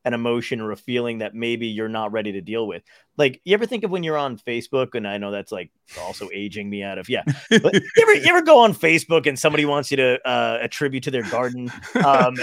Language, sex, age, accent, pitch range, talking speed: English, male, 30-49, American, 120-160 Hz, 240 wpm